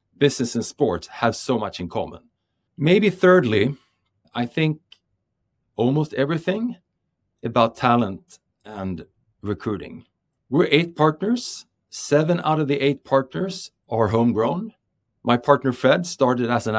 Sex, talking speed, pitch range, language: male, 125 wpm, 110-145 Hz, English